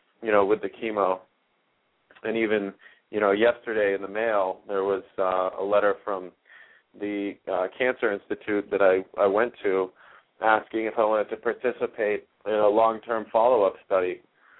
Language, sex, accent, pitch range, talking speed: English, male, American, 100-125 Hz, 160 wpm